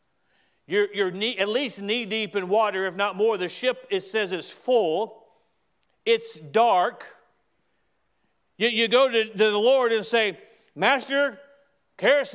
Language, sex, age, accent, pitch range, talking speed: English, male, 40-59, American, 170-255 Hz, 145 wpm